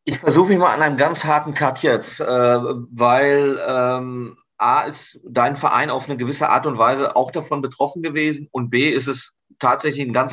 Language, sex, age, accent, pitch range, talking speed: German, male, 40-59, German, 125-150 Hz, 185 wpm